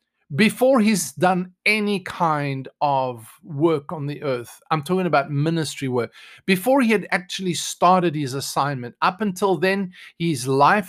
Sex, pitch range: male, 145-190 Hz